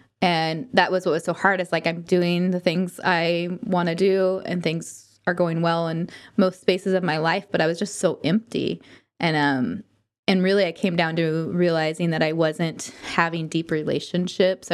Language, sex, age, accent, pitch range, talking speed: English, female, 20-39, American, 165-195 Hz, 195 wpm